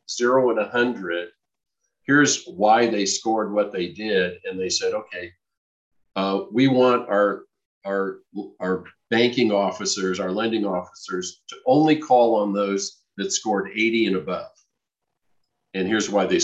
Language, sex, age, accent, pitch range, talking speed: English, male, 50-69, American, 90-120 Hz, 145 wpm